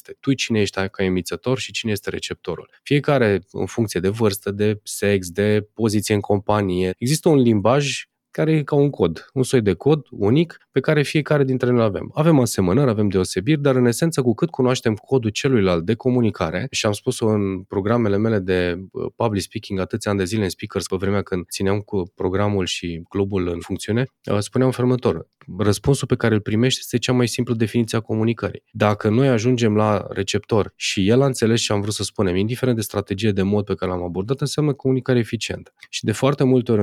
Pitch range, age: 100-130 Hz, 20-39